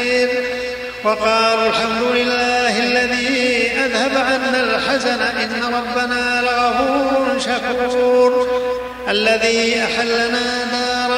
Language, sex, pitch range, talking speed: Arabic, male, 240-250 Hz, 75 wpm